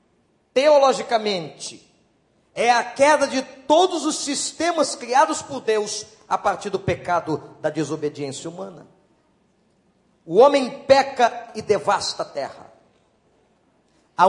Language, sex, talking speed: Portuguese, male, 110 wpm